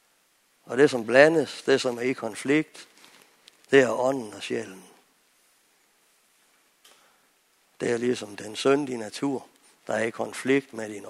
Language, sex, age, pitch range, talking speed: Danish, male, 60-79, 115-135 Hz, 140 wpm